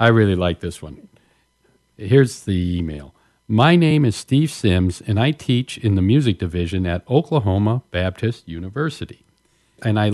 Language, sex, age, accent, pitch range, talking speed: English, male, 50-69, American, 95-135 Hz, 155 wpm